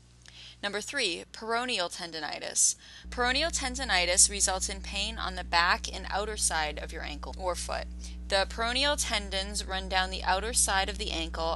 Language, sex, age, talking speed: English, female, 20-39, 160 wpm